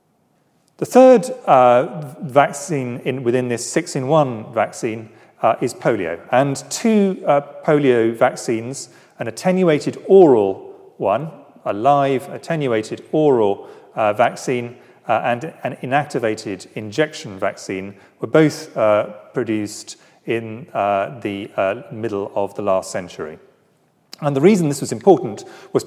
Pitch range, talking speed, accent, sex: 115-165 Hz, 120 wpm, British, male